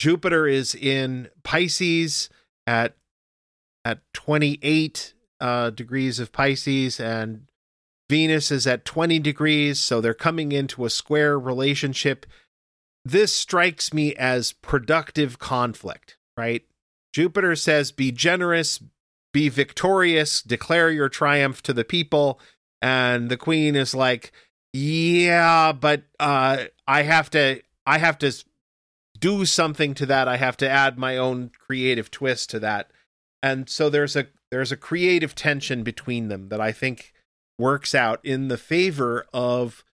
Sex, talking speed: male, 135 wpm